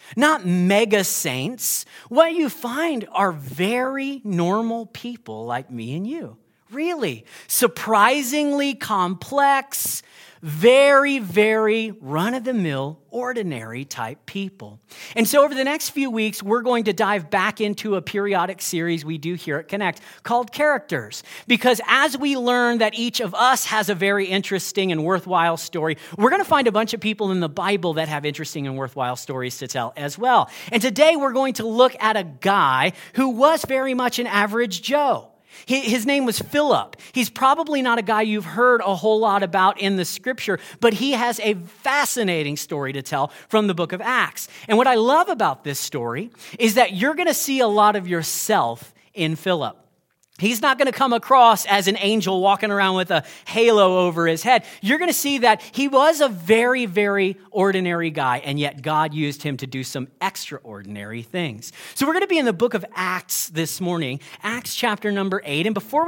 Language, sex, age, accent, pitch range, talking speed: English, male, 40-59, American, 170-250 Hz, 185 wpm